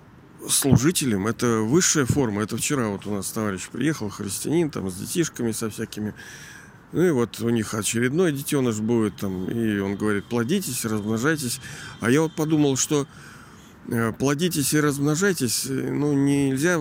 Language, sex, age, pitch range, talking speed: Russian, male, 40-59, 105-150 Hz, 145 wpm